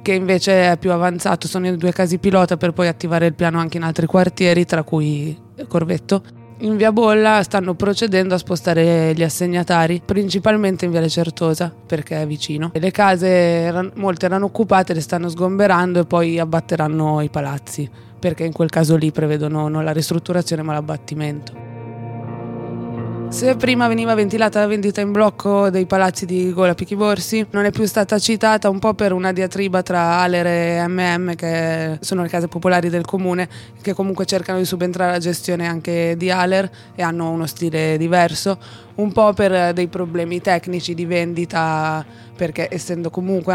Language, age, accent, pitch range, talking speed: Italian, 20-39, native, 165-190 Hz, 170 wpm